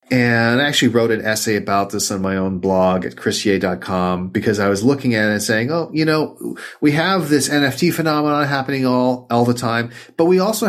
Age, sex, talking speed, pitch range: 40-59, male, 215 wpm, 115-150 Hz